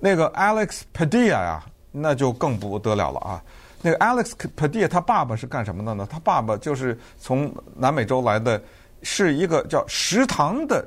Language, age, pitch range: Chinese, 50-69, 100-160 Hz